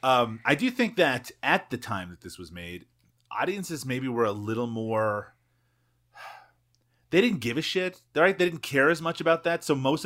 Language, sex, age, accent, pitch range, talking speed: English, male, 30-49, American, 115-155 Hz, 195 wpm